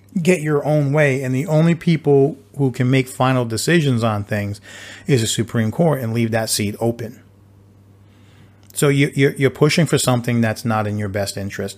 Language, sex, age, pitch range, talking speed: English, male, 40-59, 100-130 Hz, 180 wpm